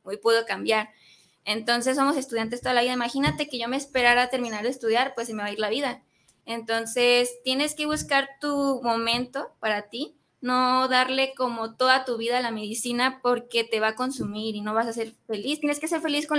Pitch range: 220-260 Hz